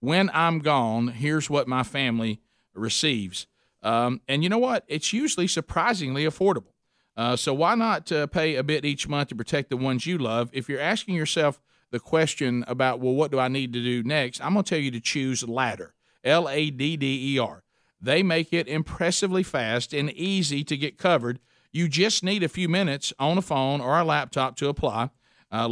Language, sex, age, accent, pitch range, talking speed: English, male, 50-69, American, 125-160 Hz, 190 wpm